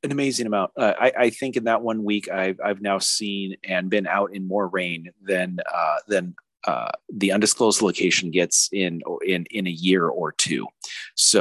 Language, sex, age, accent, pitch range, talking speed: English, male, 40-59, American, 90-125 Hz, 195 wpm